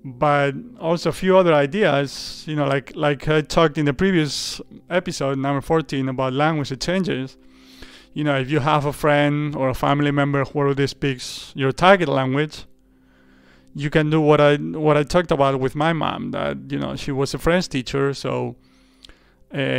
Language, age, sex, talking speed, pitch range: English, 30-49, male, 180 wpm, 130-155 Hz